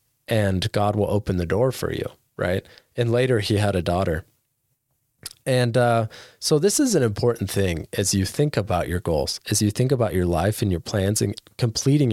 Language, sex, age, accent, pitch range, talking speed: English, male, 20-39, American, 100-125 Hz, 200 wpm